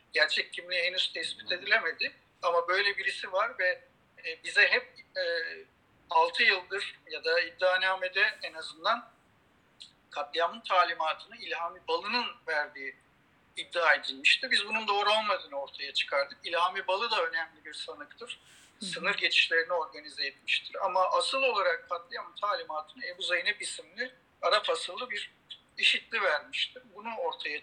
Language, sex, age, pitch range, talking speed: Turkish, male, 50-69, 175-275 Hz, 125 wpm